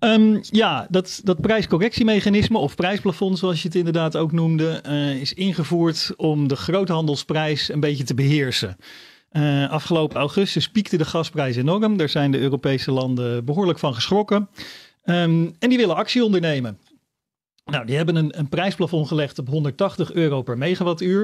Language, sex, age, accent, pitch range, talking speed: Dutch, male, 40-59, Dutch, 140-180 Hz, 155 wpm